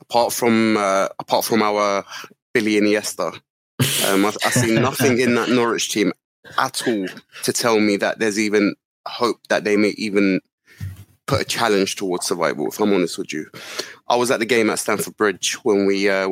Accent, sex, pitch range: British, male, 105-125 Hz